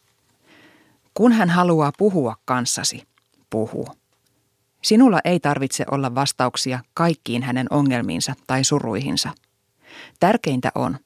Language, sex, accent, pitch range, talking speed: Finnish, female, native, 130-170 Hz, 100 wpm